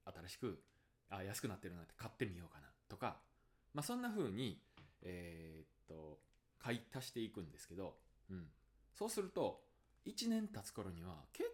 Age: 20-39